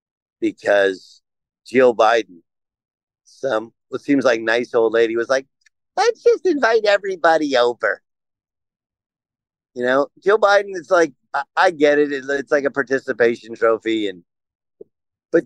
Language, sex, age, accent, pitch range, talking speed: English, male, 50-69, American, 125-185 Hz, 130 wpm